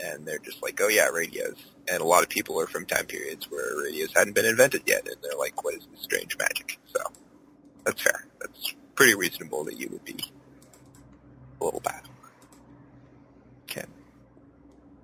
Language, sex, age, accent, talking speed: English, male, 30-49, American, 180 wpm